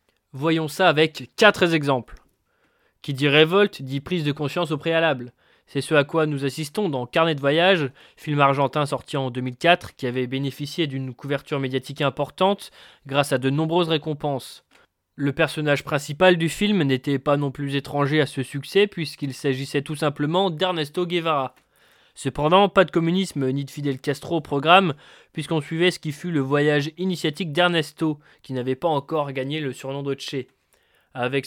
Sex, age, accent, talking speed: male, 20-39, French, 170 wpm